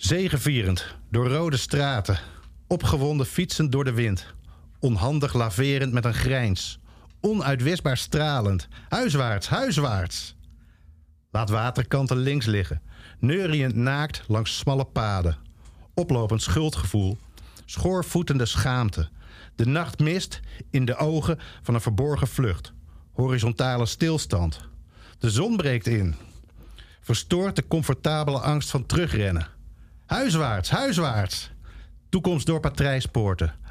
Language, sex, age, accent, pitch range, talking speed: Dutch, male, 50-69, Dutch, 90-145 Hz, 100 wpm